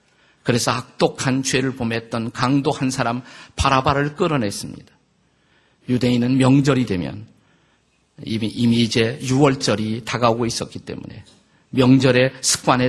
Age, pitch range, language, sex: 50-69, 120-145 Hz, Korean, male